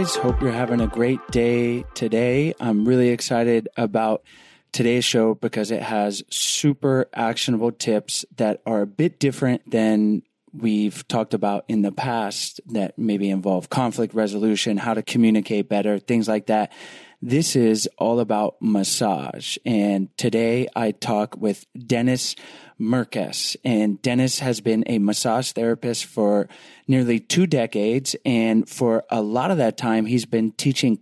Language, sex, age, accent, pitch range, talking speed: English, male, 30-49, American, 110-130 Hz, 145 wpm